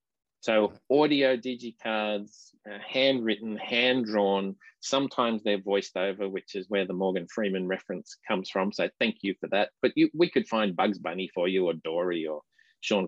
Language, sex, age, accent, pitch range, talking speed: English, male, 40-59, Australian, 105-140 Hz, 160 wpm